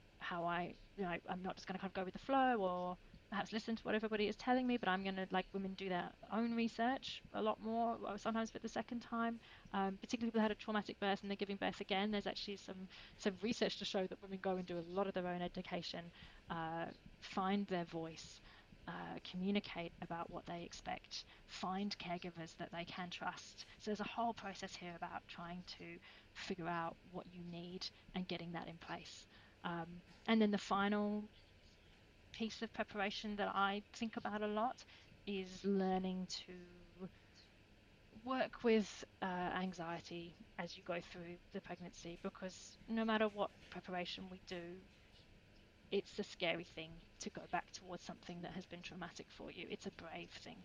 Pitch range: 175-205 Hz